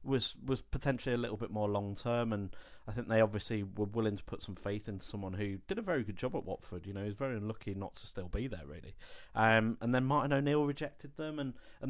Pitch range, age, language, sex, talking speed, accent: 100-125 Hz, 30-49, English, male, 255 wpm, British